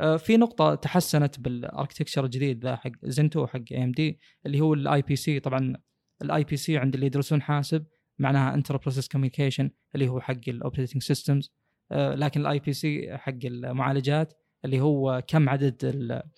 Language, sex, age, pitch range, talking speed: Arabic, male, 20-39, 135-155 Hz, 165 wpm